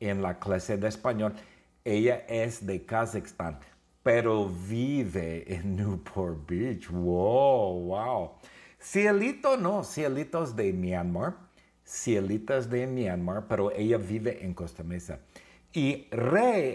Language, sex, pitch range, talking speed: English, male, 90-125 Hz, 120 wpm